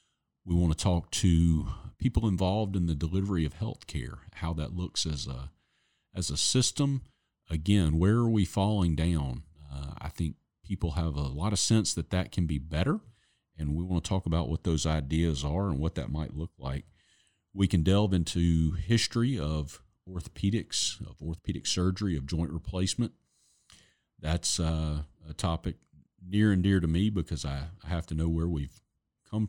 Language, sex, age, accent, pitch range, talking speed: English, male, 40-59, American, 75-95 Hz, 175 wpm